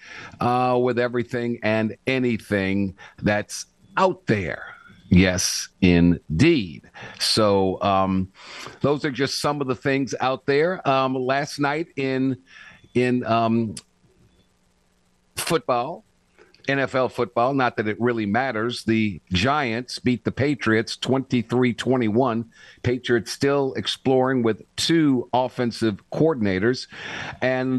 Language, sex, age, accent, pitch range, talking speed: English, male, 50-69, American, 105-130 Hz, 105 wpm